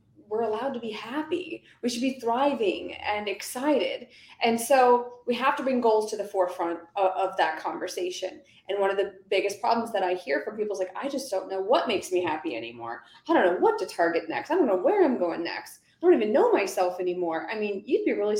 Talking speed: 235 wpm